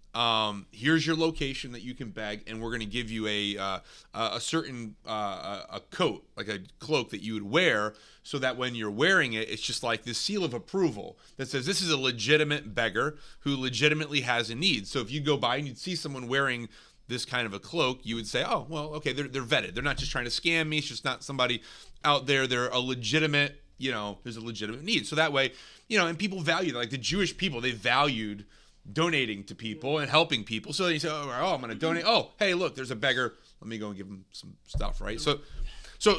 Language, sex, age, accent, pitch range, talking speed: English, male, 30-49, American, 110-150 Hz, 240 wpm